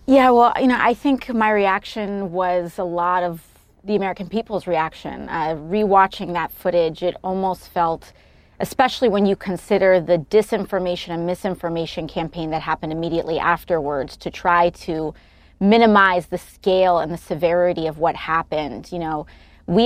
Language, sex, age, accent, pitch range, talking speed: English, female, 30-49, American, 165-200 Hz, 155 wpm